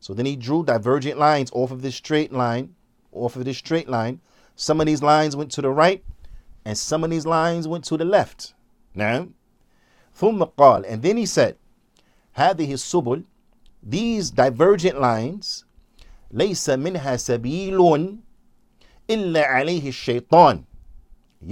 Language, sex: English, male